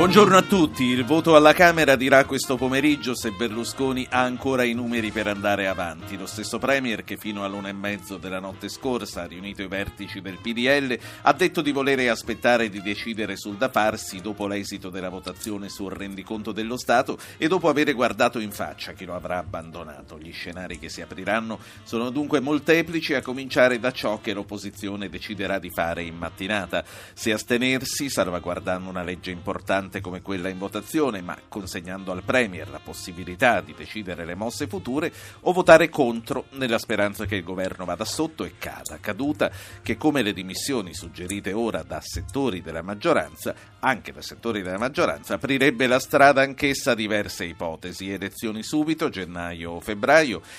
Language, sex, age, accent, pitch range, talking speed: Italian, male, 50-69, native, 95-130 Hz, 170 wpm